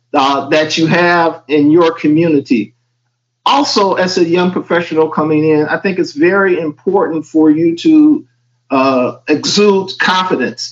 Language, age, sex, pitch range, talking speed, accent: English, 50-69, male, 150-195 Hz, 140 wpm, American